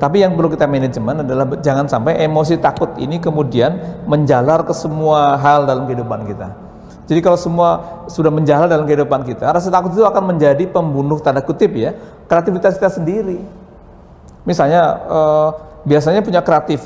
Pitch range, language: 135-175 Hz, English